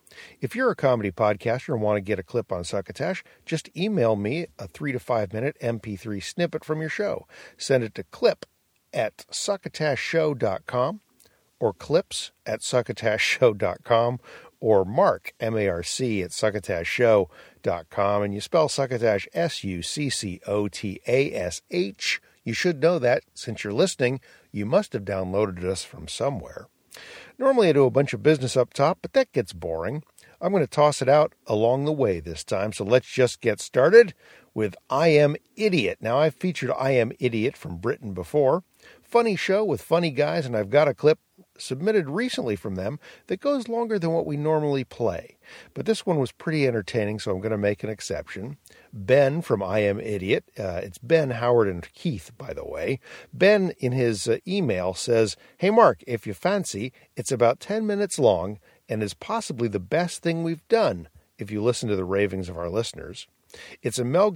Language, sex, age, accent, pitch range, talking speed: English, male, 50-69, American, 105-165 Hz, 175 wpm